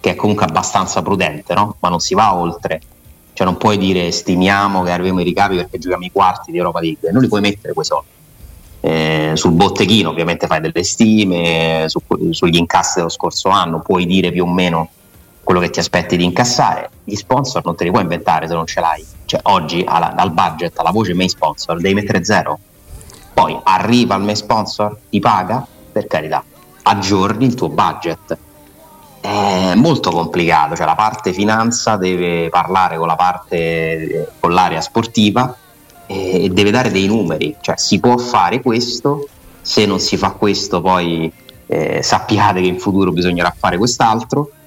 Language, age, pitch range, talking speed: Italian, 30-49, 85-105 Hz, 175 wpm